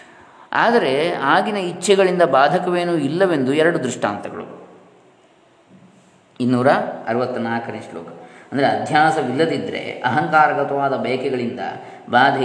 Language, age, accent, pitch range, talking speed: Kannada, 20-39, native, 115-140 Hz, 70 wpm